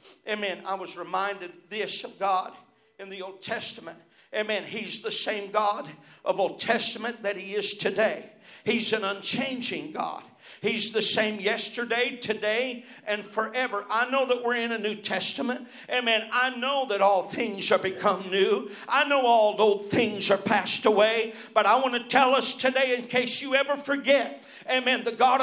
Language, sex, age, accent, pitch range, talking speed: English, male, 50-69, American, 225-300 Hz, 175 wpm